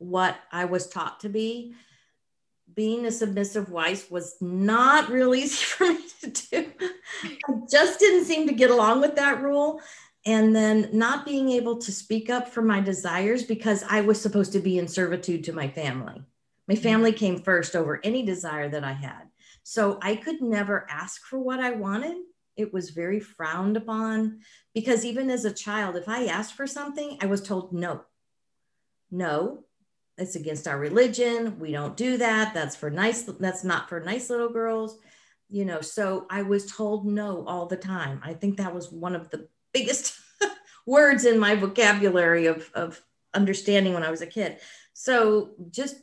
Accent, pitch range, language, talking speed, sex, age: American, 185-250 Hz, English, 180 wpm, female, 50-69